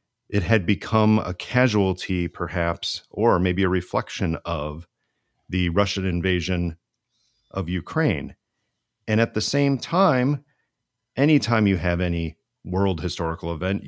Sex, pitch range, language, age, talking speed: male, 85-100 Hz, English, 40-59, 120 wpm